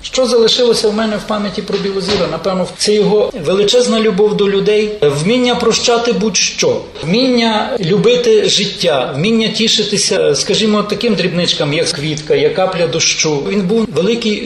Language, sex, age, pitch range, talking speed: Ukrainian, male, 40-59, 170-230 Hz, 140 wpm